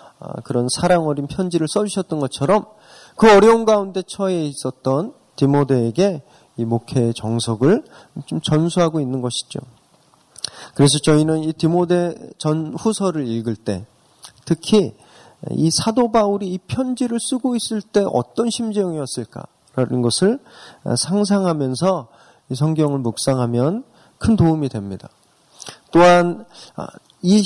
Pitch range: 130-190 Hz